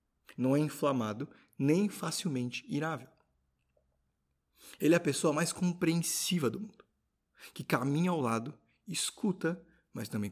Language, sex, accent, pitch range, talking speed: Portuguese, male, Brazilian, 145-180 Hz, 120 wpm